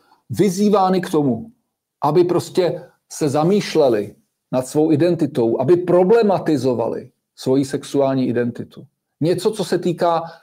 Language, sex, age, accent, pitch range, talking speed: Czech, male, 50-69, native, 155-190 Hz, 110 wpm